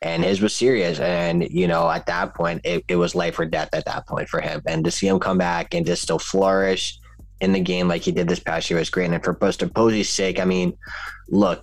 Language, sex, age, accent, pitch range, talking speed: English, male, 20-39, American, 85-100 Hz, 260 wpm